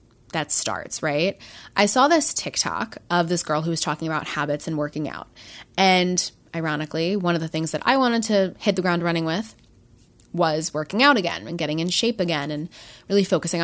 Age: 20-39